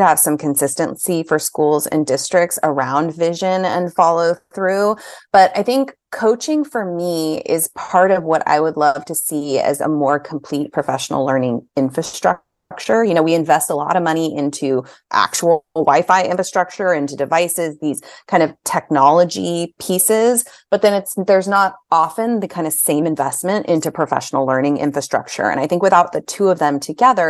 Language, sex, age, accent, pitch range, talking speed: English, female, 30-49, American, 150-190 Hz, 170 wpm